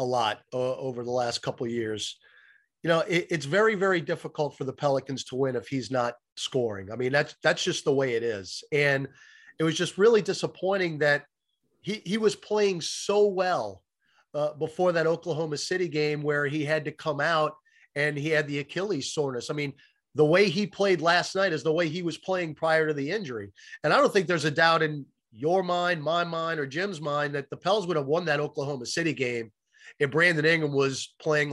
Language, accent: English, American